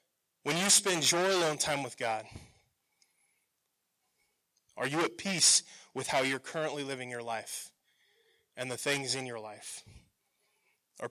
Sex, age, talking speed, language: male, 20-39, 140 wpm, English